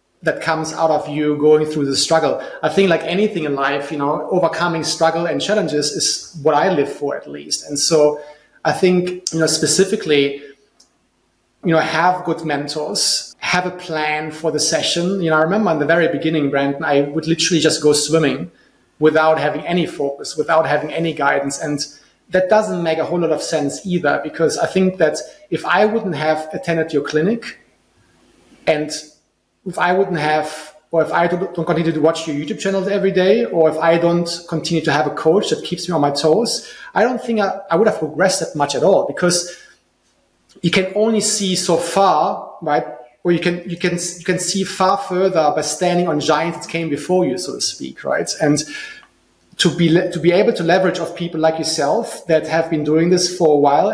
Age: 30-49